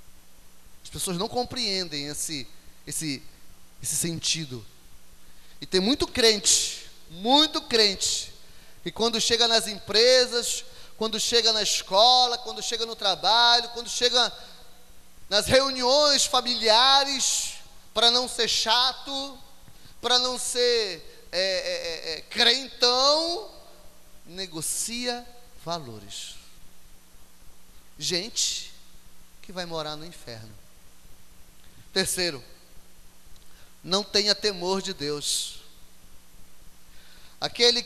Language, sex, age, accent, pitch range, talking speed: Portuguese, male, 20-39, Brazilian, 155-240 Hz, 85 wpm